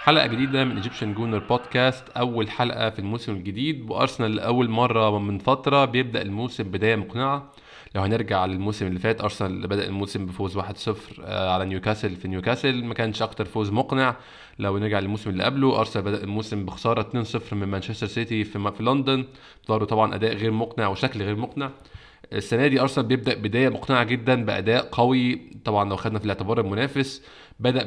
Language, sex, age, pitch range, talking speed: Arabic, male, 20-39, 105-125 Hz, 170 wpm